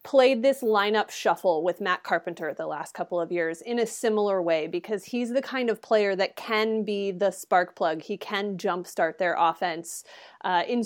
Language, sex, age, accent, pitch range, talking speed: English, female, 30-49, American, 175-235 Hz, 195 wpm